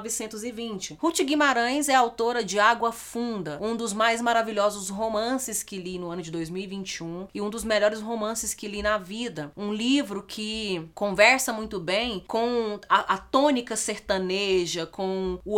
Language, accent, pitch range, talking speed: Portuguese, Brazilian, 185-235 Hz, 160 wpm